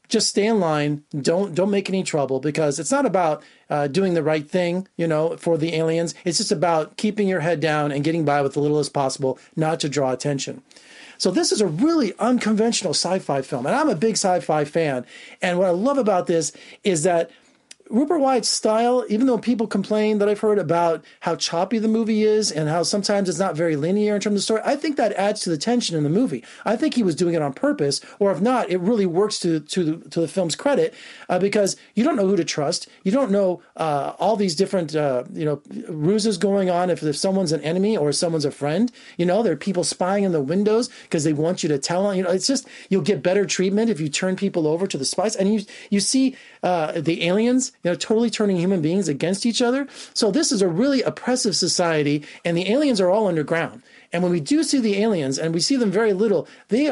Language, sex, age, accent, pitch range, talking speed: English, male, 40-59, American, 160-220 Hz, 240 wpm